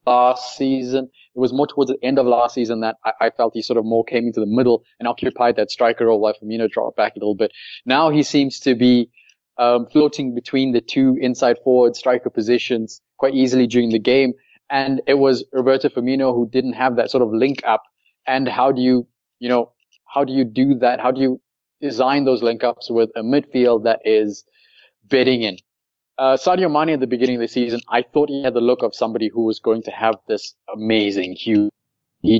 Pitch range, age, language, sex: 115-135 Hz, 20-39, English, male